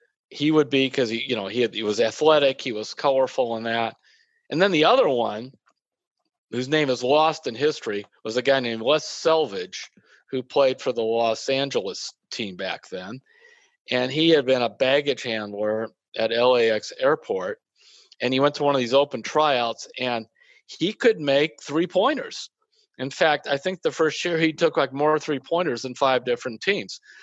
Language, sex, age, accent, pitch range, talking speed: English, male, 40-59, American, 130-220 Hz, 185 wpm